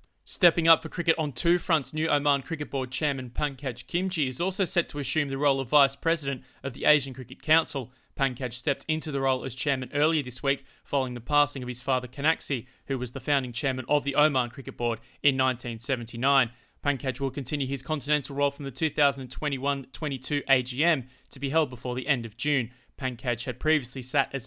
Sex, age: male, 20-39